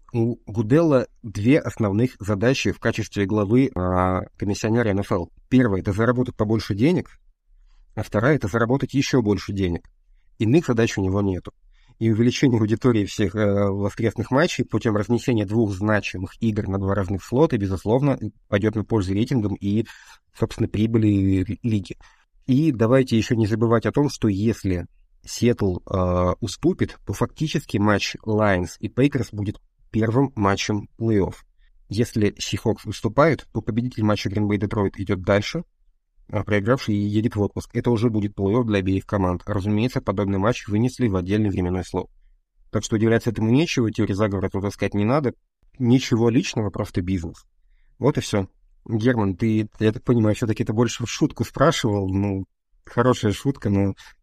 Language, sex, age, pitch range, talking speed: Russian, male, 30-49, 100-120 Hz, 150 wpm